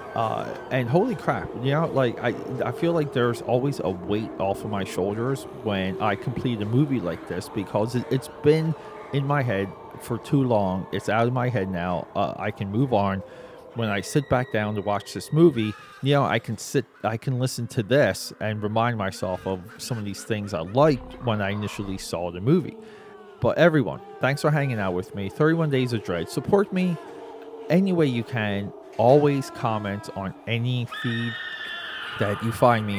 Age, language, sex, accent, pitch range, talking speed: 30-49, English, male, American, 105-145 Hz, 200 wpm